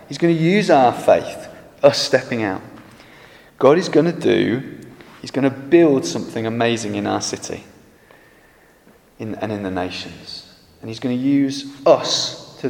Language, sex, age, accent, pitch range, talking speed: English, male, 30-49, British, 95-120 Hz, 165 wpm